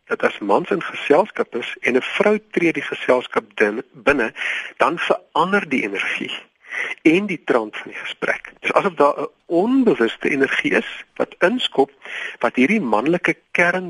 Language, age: Dutch, 50-69